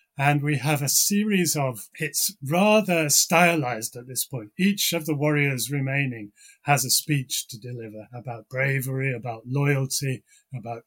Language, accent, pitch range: English, British, 125-150 Hz